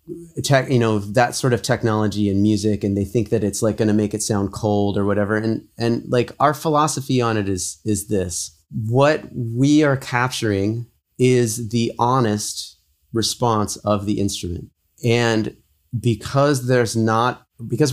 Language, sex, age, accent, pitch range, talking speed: English, male, 30-49, American, 100-125 Hz, 165 wpm